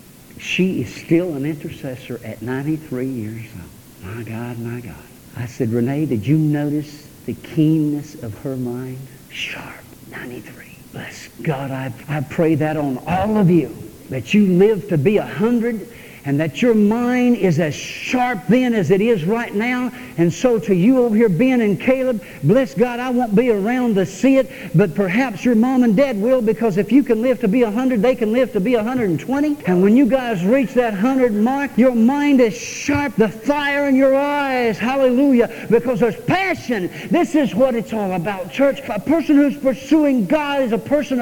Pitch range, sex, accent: 180-270 Hz, male, American